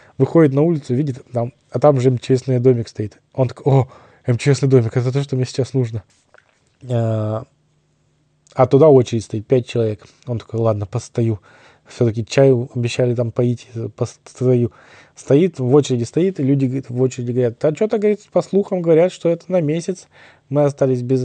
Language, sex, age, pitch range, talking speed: Russian, male, 20-39, 120-140 Hz, 165 wpm